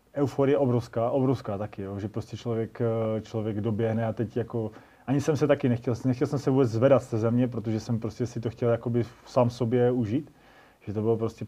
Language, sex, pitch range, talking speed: Slovak, male, 110-120 Hz, 210 wpm